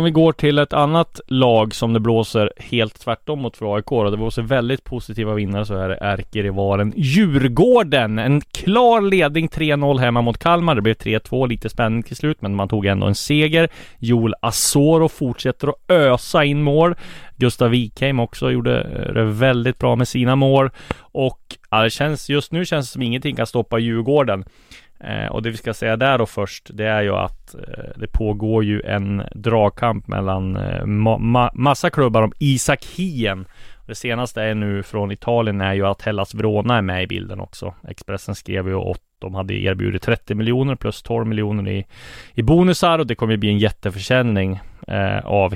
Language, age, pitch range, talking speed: Swedish, 20-39, 100-130 Hz, 185 wpm